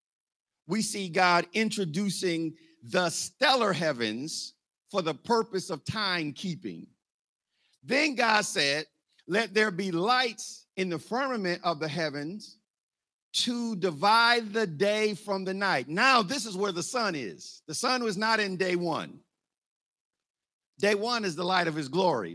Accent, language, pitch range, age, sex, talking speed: American, English, 175-225 Hz, 50-69, male, 150 wpm